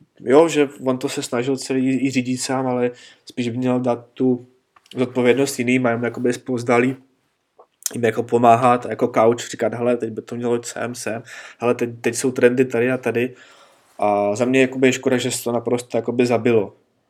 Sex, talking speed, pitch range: male, 170 wpm, 115-125 Hz